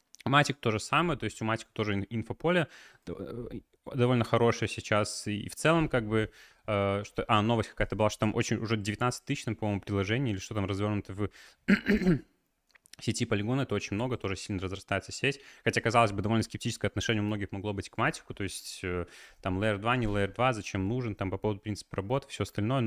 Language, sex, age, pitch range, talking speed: Russian, male, 20-39, 100-120 Hz, 190 wpm